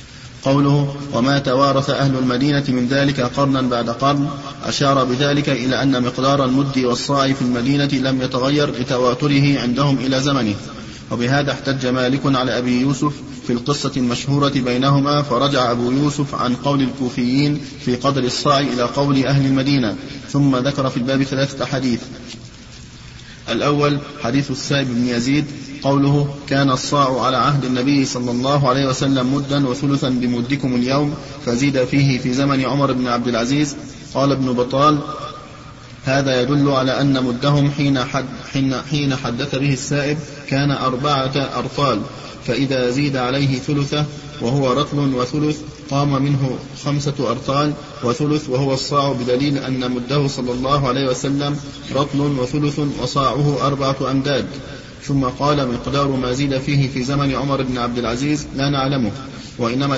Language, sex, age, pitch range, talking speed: Arabic, male, 30-49, 125-140 Hz, 140 wpm